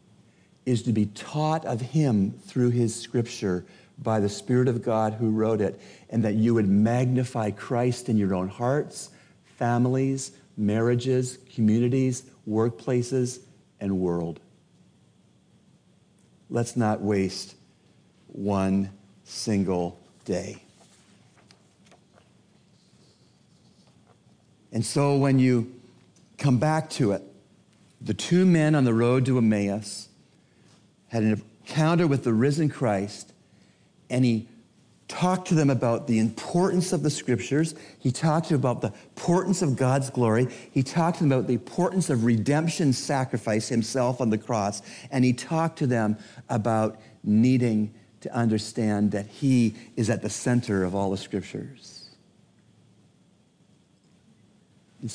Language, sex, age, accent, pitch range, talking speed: English, male, 50-69, American, 110-135 Hz, 125 wpm